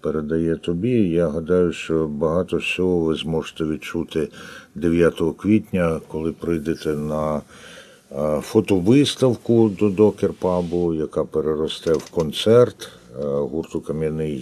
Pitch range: 75-90 Hz